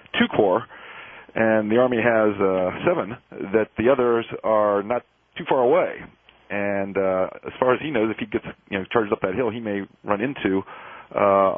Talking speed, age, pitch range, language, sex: 190 wpm, 40-59, 100-125 Hz, English, male